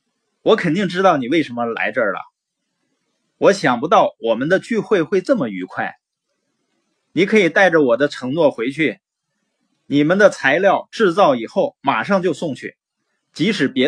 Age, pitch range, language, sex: 30-49, 130-205 Hz, Chinese, male